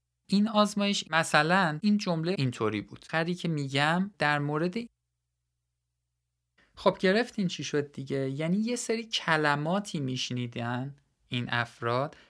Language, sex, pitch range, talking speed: Persian, male, 130-185 Hz, 115 wpm